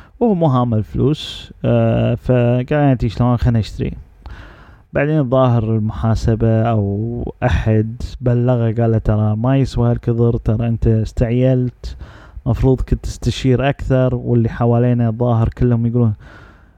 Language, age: English, 30-49